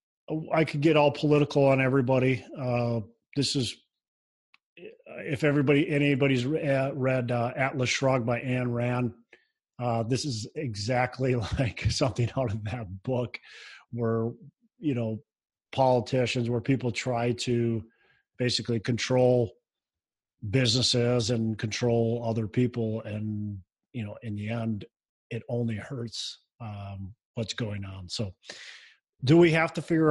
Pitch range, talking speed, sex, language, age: 115-135 Hz, 130 wpm, male, English, 40-59